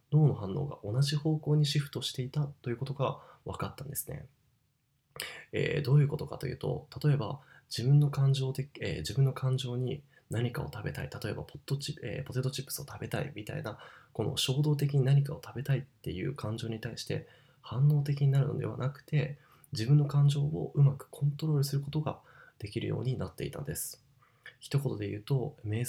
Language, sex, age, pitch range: Japanese, male, 20-39, 120-145 Hz